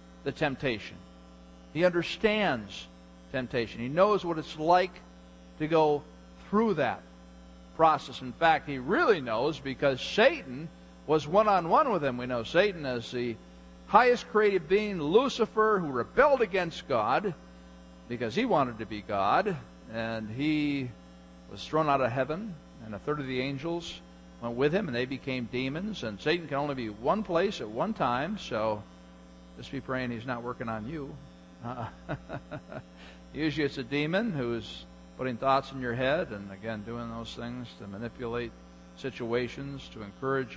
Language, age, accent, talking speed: English, 50-69, American, 155 wpm